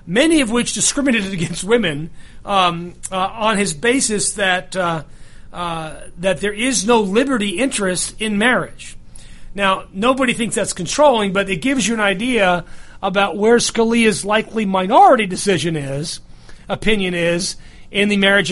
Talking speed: 145 wpm